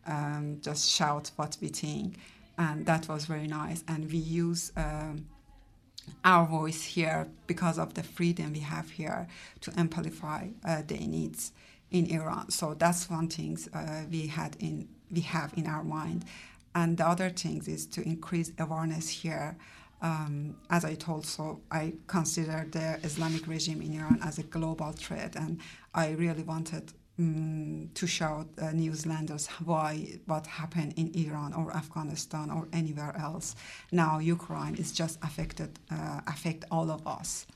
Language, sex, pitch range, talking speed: English, female, 155-170 Hz, 160 wpm